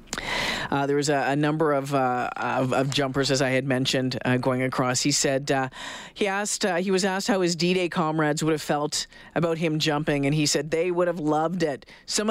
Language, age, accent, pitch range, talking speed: English, 40-59, American, 130-160 Hz, 225 wpm